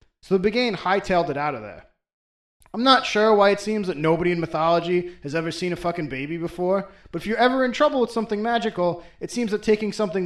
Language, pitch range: English, 165-220 Hz